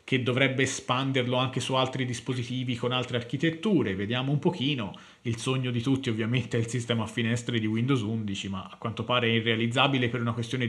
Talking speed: 195 wpm